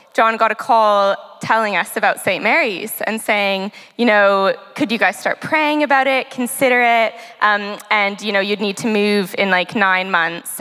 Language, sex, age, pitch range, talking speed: English, female, 10-29, 205-280 Hz, 190 wpm